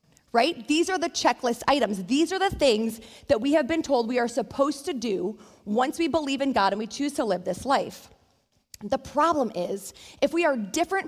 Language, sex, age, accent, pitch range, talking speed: English, female, 20-39, American, 225-315 Hz, 210 wpm